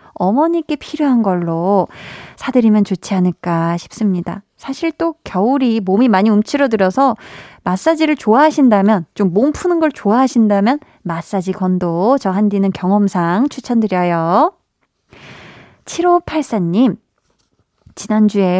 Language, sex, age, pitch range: Korean, female, 20-39, 195-260 Hz